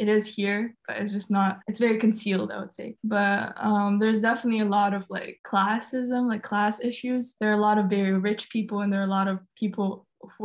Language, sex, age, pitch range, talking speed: English, female, 10-29, 195-215 Hz, 235 wpm